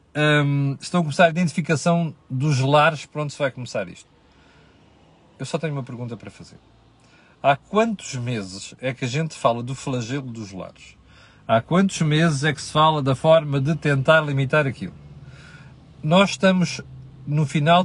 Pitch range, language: 130-170 Hz, Portuguese